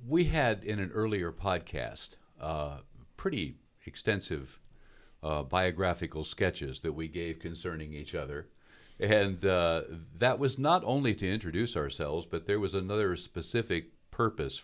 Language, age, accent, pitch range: English, 50-69, American, 80-110 Hz